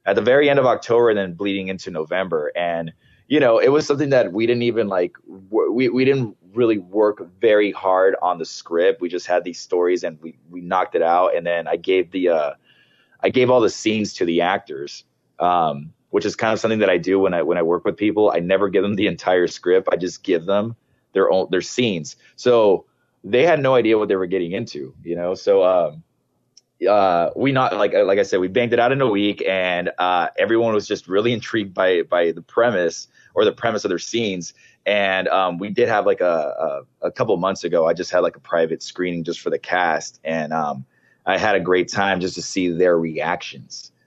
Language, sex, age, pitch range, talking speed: English, male, 20-39, 90-125 Hz, 230 wpm